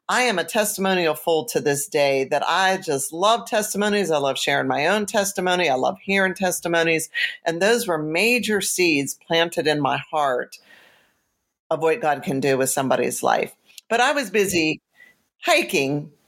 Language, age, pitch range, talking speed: English, 50-69, 145-180 Hz, 165 wpm